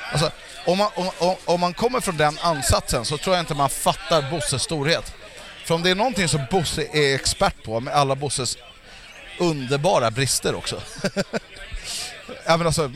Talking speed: 155 wpm